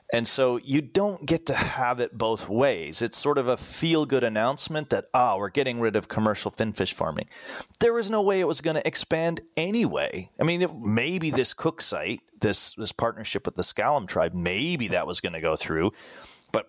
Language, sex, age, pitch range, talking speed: English, male, 30-49, 95-135 Hz, 205 wpm